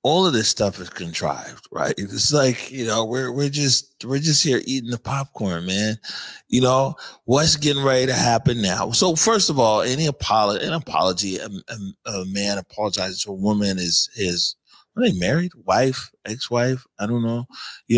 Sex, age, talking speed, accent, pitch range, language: male, 30-49, 185 wpm, American, 100-120 Hz, English